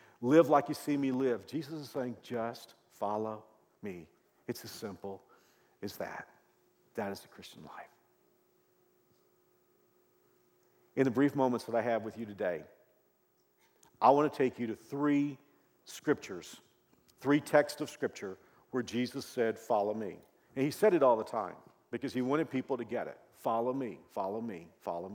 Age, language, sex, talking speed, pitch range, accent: 50-69, English, male, 160 wpm, 120-150 Hz, American